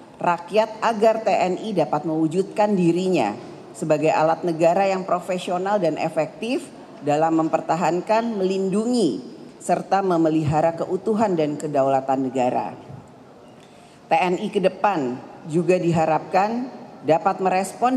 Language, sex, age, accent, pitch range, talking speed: Indonesian, female, 40-59, native, 160-205 Hz, 95 wpm